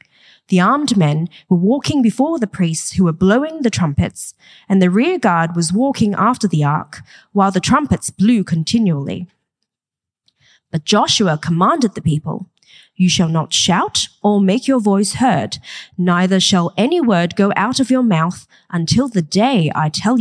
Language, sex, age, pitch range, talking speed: English, female, 20-39, 165-220 Hz, 165 wpm